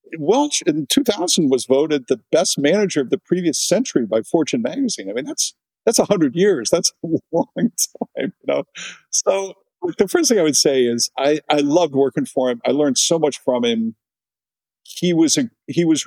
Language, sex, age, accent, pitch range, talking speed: English, male, 50-69, American, 130-205 Hz, 200 wpm